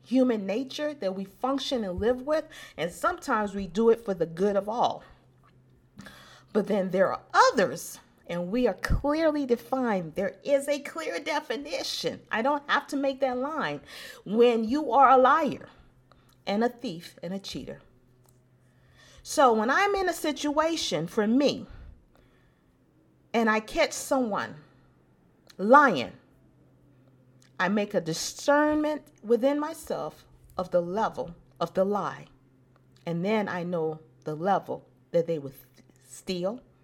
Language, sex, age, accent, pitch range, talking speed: English, female, 40-59, American, 155-260 Hz, 140 wpm